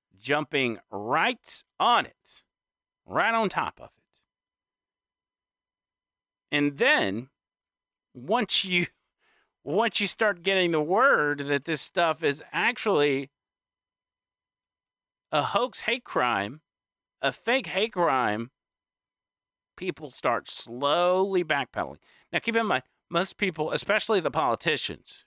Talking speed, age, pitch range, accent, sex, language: 105 wpm, 40-59, 125-170 Hz, American, male, English